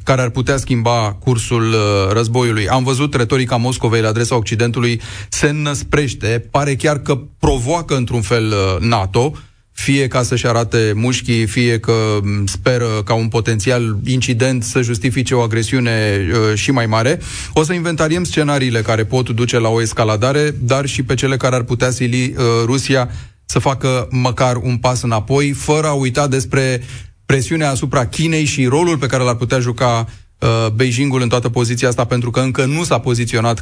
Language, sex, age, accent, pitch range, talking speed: Romanian, male, 30-49, native, 110-130 Hz, 165 wpm